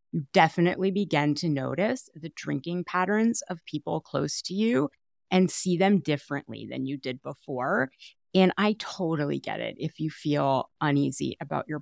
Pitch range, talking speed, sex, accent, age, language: 155-225 Hz, 160 wpm, female, American, 30-49, English